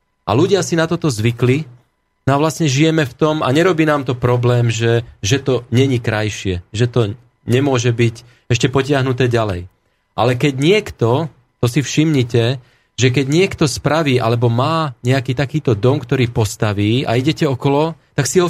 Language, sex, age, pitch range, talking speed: Slovak, male, 30-49, 115-145 Hz, 170 wpm